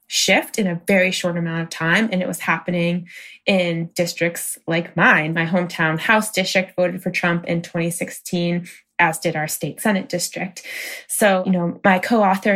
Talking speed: 175 wpm